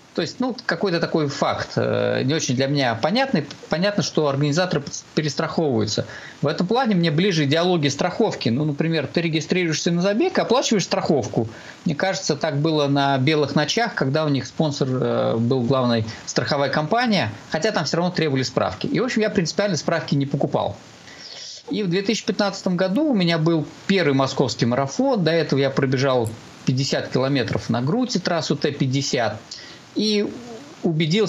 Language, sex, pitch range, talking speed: Russian, male, 140-190 Hz, 160 wpm